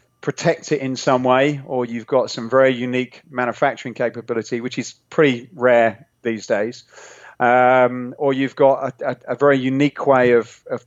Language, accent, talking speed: English, British, 170 wpm